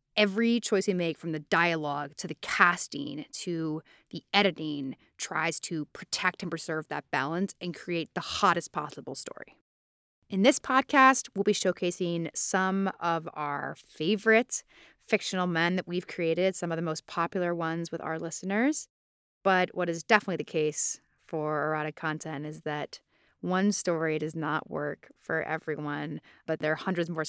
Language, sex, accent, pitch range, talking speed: English, female, American, 160-195 Hz, 160 wpm